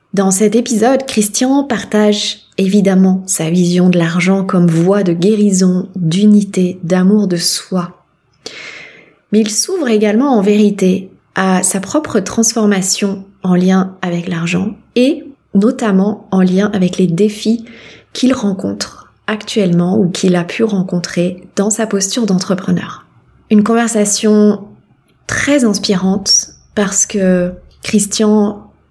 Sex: female